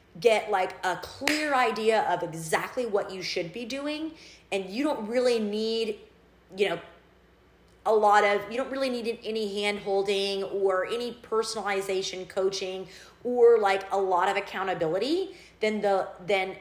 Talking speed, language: 150 wpm, English